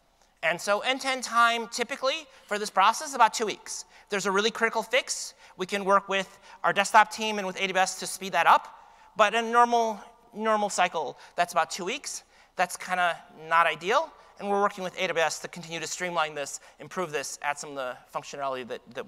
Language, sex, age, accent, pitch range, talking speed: English, male, 30-49, American, 165-215 Hz, 210 wpm